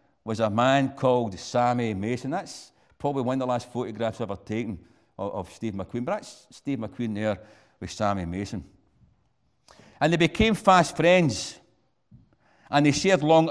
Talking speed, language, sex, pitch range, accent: 160 wpm, English, male, 115-150 Hz, British